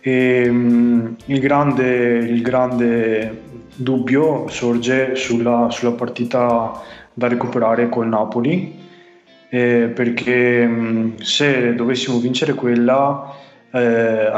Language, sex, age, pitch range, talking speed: Italian, male, 20-39, 115-125 Hz, 95 wpm